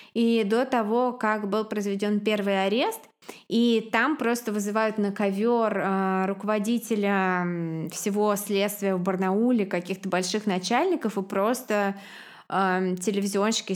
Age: 20-39